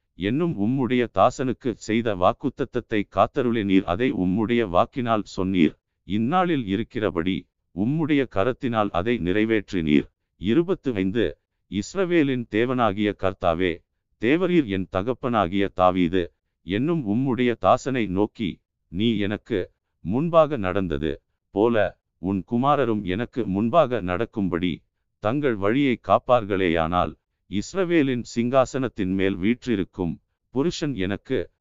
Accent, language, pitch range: native, Tamil, 95-125 Hz